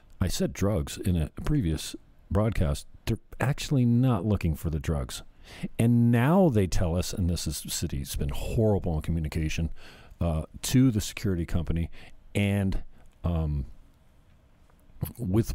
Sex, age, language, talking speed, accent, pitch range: male, 50-69, English, 140 wpm, American, 85-105 Hz